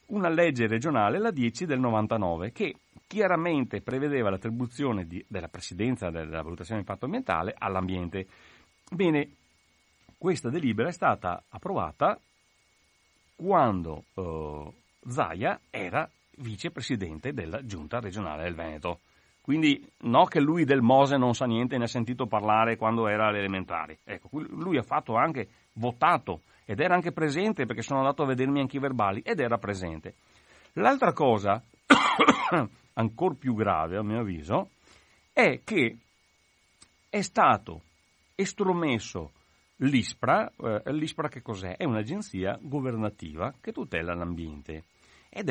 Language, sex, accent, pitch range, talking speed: Italian, male, native, 85-135 Hz, 130 wpm